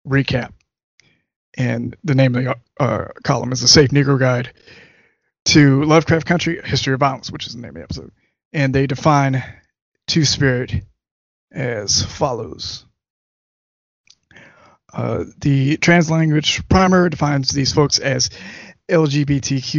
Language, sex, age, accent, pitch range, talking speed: English, male, 20-39, American, 130-150 Hz, 125 wpm